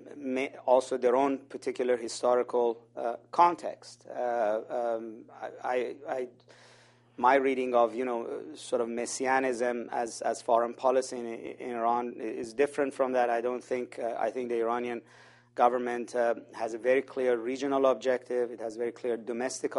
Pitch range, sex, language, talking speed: 115-130 Hz, male, English, 160 wpm